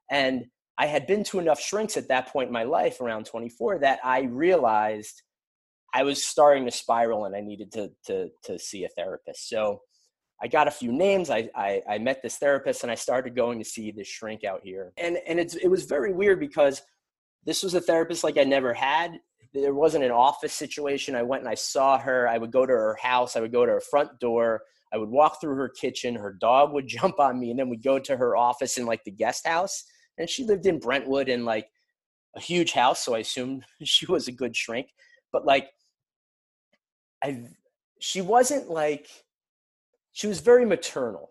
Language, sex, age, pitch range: English, male, 30-49, 120-185 Hz